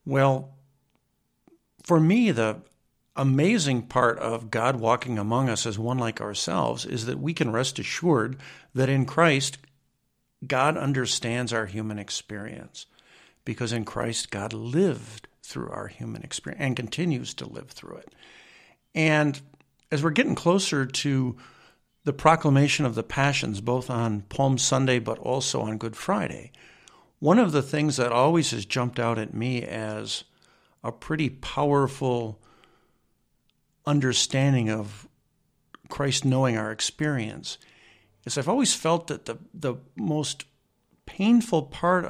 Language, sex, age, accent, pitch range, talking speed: English, male, 50-69, American, 115-150 Hz, 135 wpm